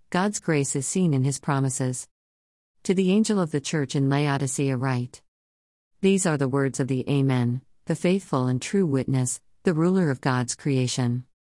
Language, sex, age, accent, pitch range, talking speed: English, female, 40-59, American, 130-180 Hz, 170 wpm